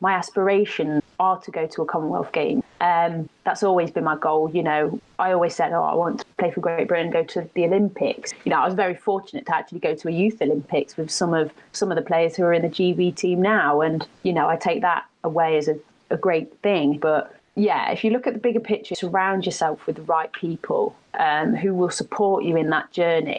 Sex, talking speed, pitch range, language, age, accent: female, 245 wpm, 165-195 Hz, English, 30-49, British